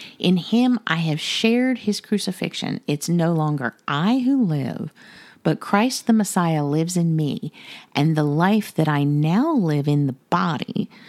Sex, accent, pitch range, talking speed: female, American, 155-215 Hz, 160 wpm